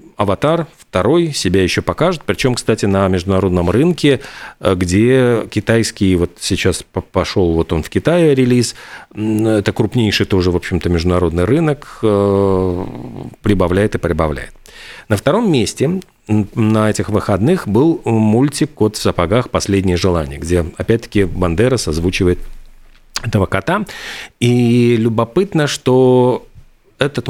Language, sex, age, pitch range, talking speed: Russian, male, 40-59, 95-125 Hz, 115 wpm